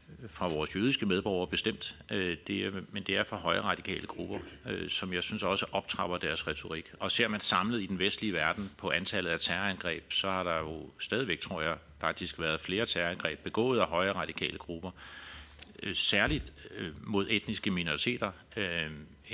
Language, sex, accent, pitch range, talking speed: Danish, male, native, 80-95 Hz, 175 wpm